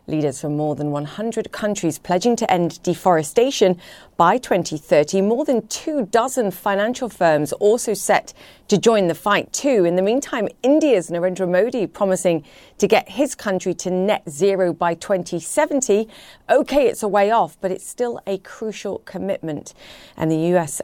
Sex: female